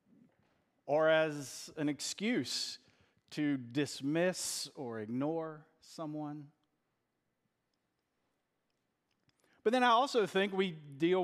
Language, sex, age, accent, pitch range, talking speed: English, male, 40-59, American, 145-175 Hz, 85 wpm